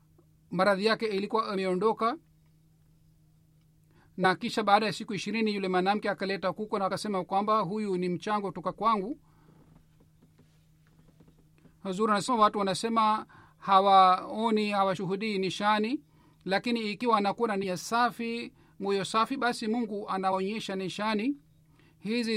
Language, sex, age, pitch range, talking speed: Swahili, male, 40-59, 175-215 Hz, 105 wpm